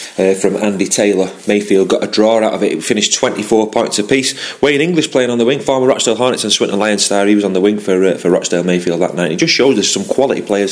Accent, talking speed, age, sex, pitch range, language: British, 270 wpm, 30-49, male, 100-135 Hz, English